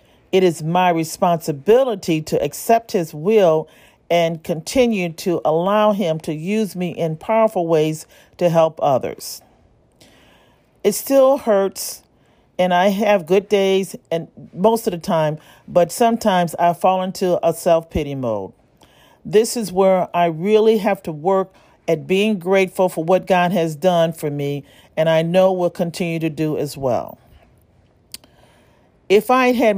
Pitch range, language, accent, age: 165-205 Hz, English, American, 40-59